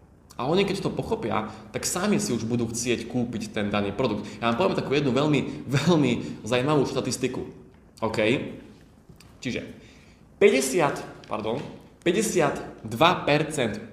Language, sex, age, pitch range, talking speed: Slovak, male, 20-39, 110-150 Hz, 125 wpm